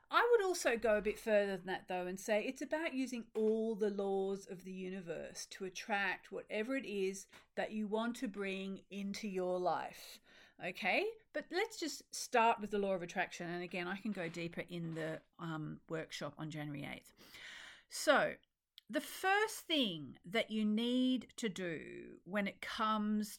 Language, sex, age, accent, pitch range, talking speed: English, female, 40-59, Australian, 185-255 Hz, 175 wpm